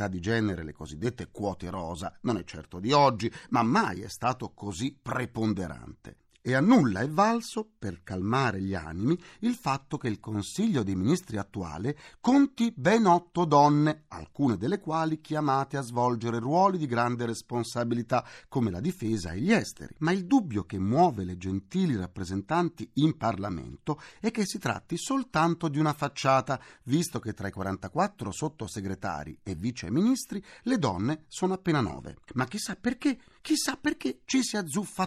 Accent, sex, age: native, male, 40-59